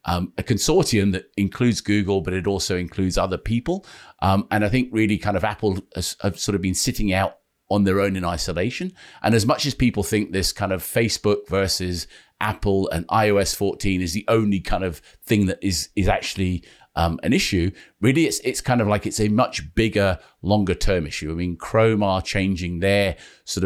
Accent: British